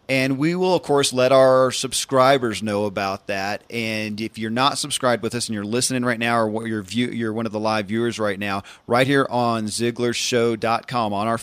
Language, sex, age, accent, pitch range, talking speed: English, male, 40-59, American, 105-130 Hz, 215 wpm